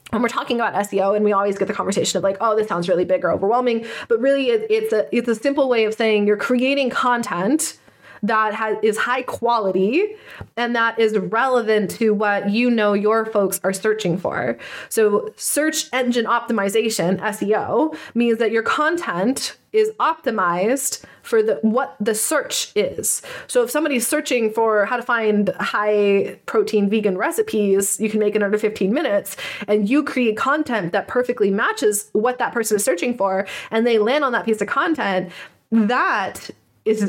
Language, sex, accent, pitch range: English, female, American, 200-245 Hz